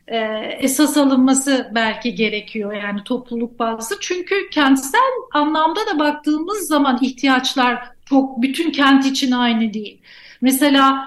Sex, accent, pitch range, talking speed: female, native, 245-295 Hz, 115 wpm